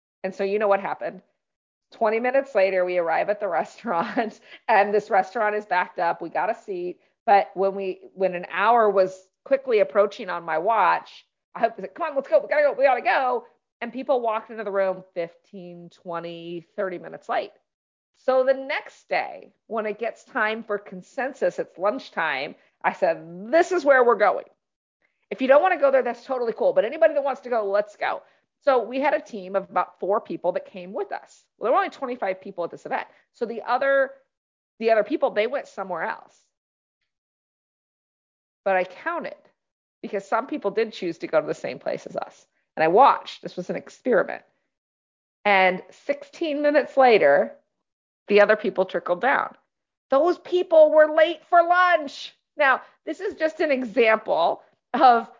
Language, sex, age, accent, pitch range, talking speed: English, female, 40-59, American, 195-280 Hz, 185 wpm